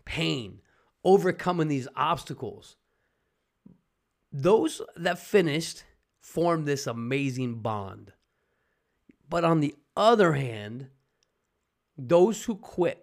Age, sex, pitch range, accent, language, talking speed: 30-49, male, 130-180 Hz, American, English, 90 wpm